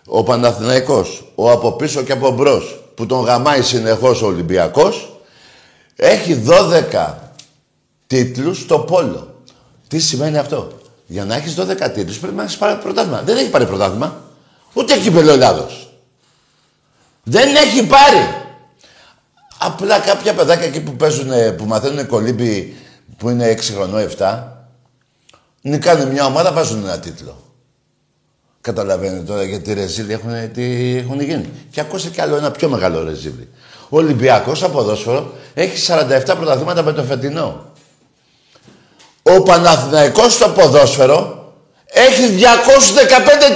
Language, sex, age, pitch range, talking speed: Greek, male, 50-69, 120-185 Hz, 130 wpm